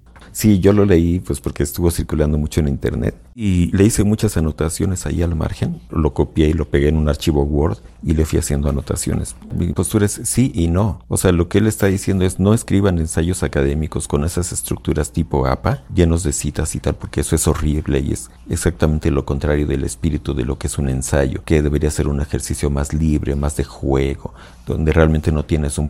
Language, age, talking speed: Spanish, 50-69, 215 wpm